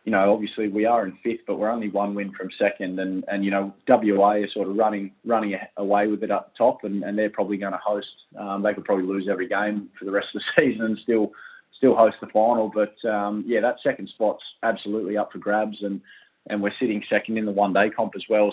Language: English